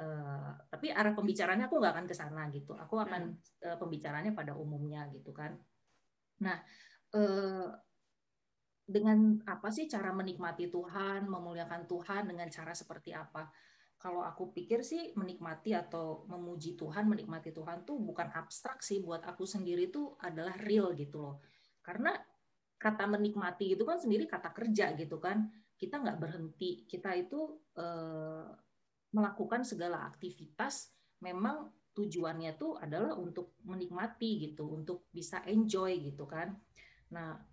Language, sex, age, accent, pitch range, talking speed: Indonesian, female, 20-39, native, 165-210 Hz, 135 wpm